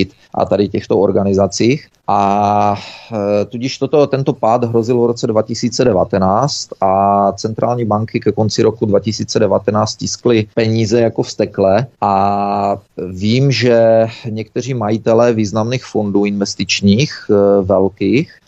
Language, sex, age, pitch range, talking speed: Czech, male, 30-49, 100-125 Hz, 105 wpm